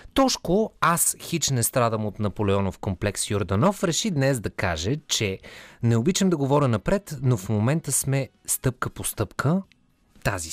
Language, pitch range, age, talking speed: Bulgarian, 105-150 Hz, 30-49, 155 wpm